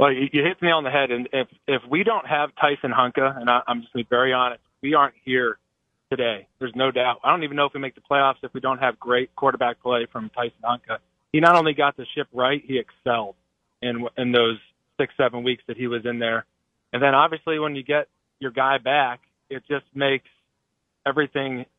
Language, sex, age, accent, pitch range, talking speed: English, male, 30-49, American, 120-140 Hz, 225 wpm